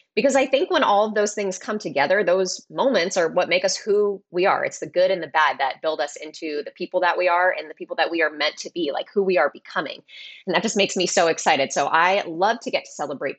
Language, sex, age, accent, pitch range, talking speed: English, female, 20-39, American, 160-210 Hz, 280 wpm